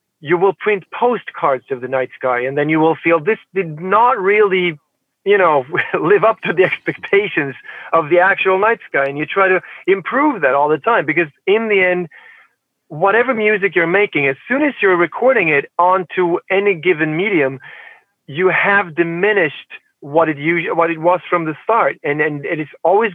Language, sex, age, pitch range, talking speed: English, male, 40-59, 155-200 Hz, 185 wpm